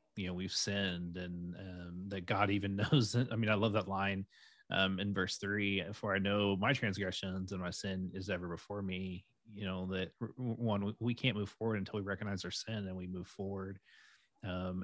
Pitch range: 95-110 Hz